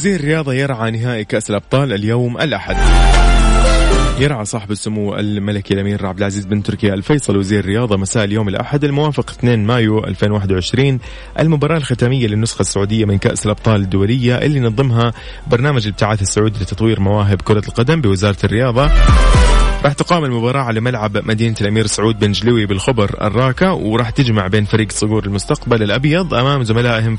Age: 20-39